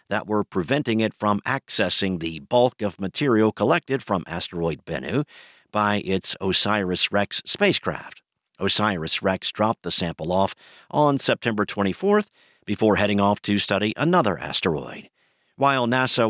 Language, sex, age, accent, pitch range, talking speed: English, male, 50-69, American, 95-125 Hz, 130 wpm